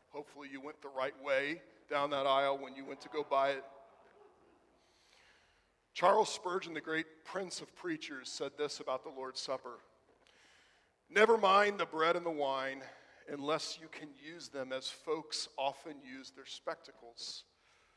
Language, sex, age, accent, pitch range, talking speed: English, male, 40-59, American, 150-225 Hz, 155 wpm